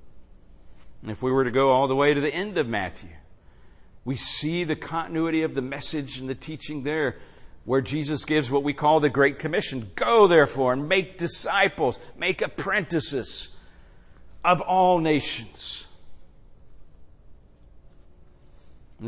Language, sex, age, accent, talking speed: English, male, 50-69, American, 140 wpm